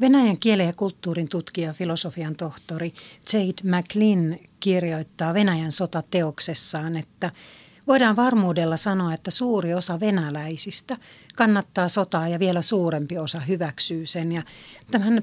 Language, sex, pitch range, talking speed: Finnish, female, 165-195 Hz, 120 wpm